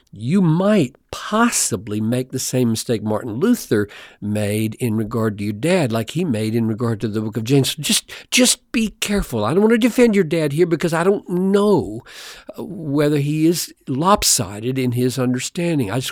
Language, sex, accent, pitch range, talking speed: English, male, American, 105-155 Hz, 190 wpm